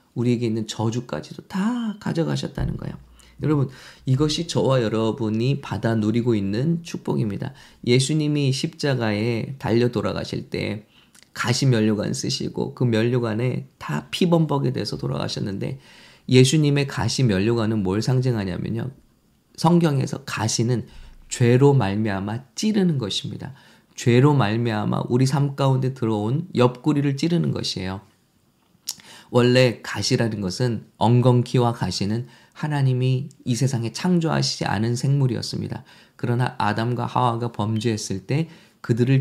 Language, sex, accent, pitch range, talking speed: English, male, Korean, 110-145 Hz, 100 wpm